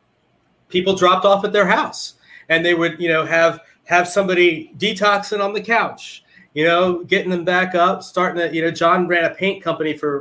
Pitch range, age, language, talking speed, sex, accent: 150-180 Hz, 30-49, English, 200 wpm, male, American